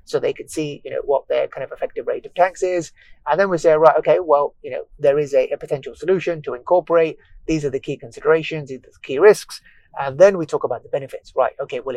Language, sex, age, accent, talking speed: English, male, 30-49, British, 260 wpm